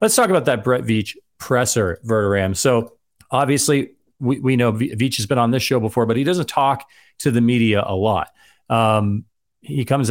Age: 40-59